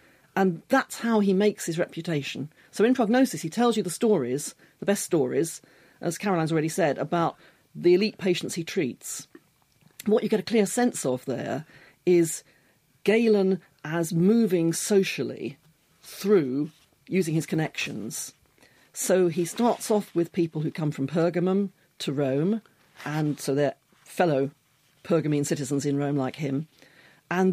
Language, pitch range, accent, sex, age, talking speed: English, 150-205 Hz, British, female, 40-59, 150 wpm